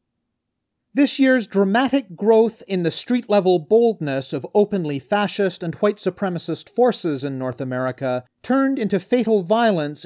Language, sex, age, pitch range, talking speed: English, male, 40-59, 160-220 Hz, 130 wpm